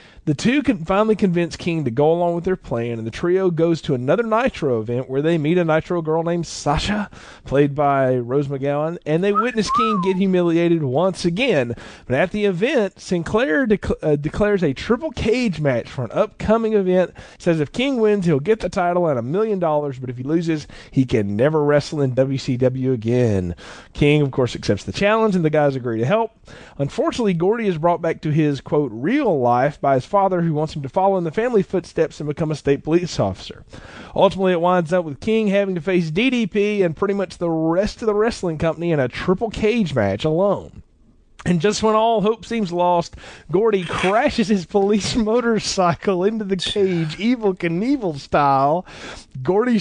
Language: English